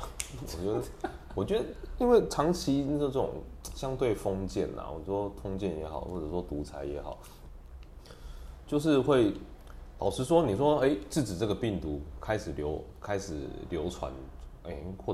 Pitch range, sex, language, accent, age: 70-120 Hz, male, Chinese, native, 30-49